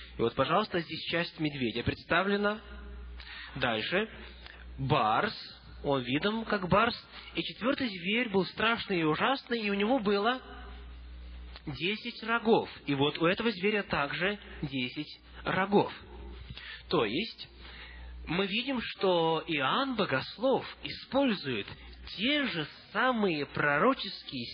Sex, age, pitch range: male, 20-39, 140-230 Hz